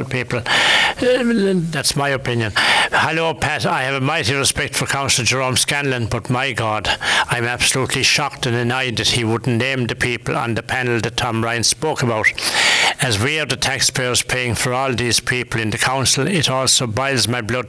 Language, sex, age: English, male, 60-79